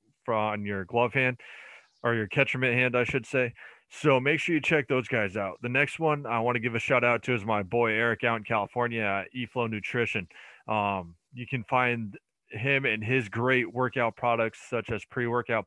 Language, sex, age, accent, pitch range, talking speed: English, male, 20-39, American, 105-130 Hz, 205 wpm